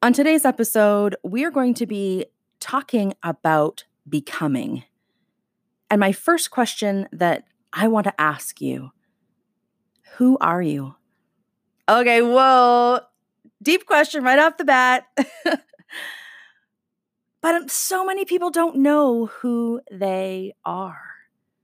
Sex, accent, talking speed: female, American, 115 wpm